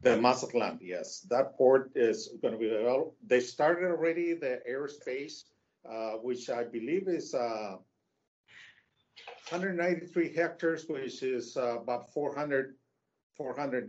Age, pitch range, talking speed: 50-69, 115-150 Hz, 125 wpm